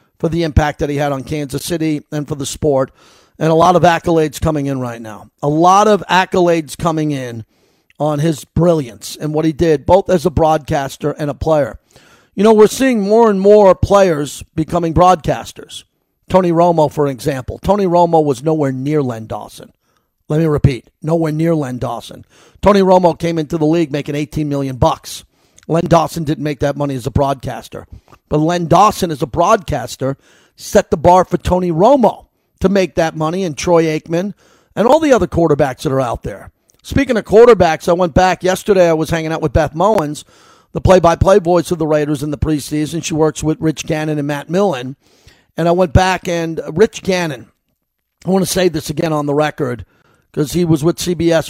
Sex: male